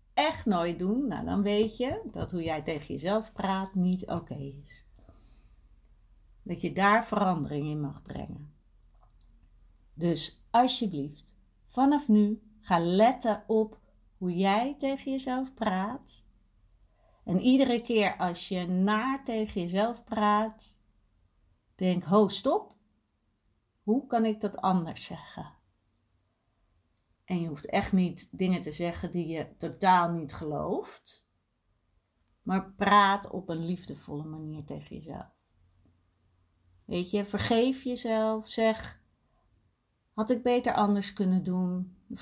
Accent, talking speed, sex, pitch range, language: Dutch, 120 wpm, female, 140-220 Hz, Dutch